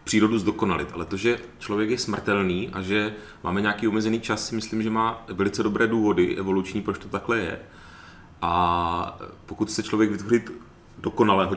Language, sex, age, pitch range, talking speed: Czech, male, 30-49, 85-100 Hz, 165 wpm